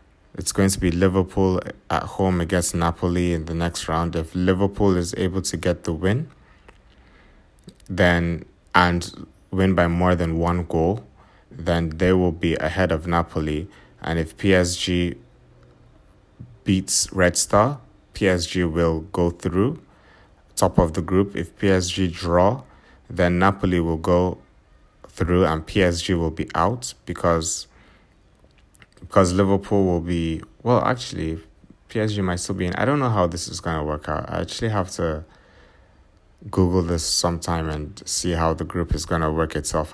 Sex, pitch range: male, 80-95 Hz